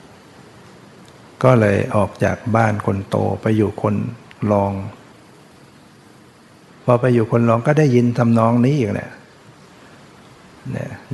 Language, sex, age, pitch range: Thai, male, 60-79, 105-120 Hz